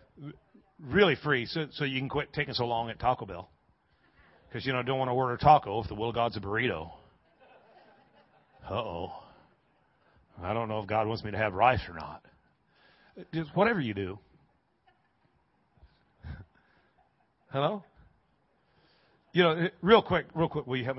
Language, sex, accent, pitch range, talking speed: English, male, American, 110-150 Hz, 165 wpm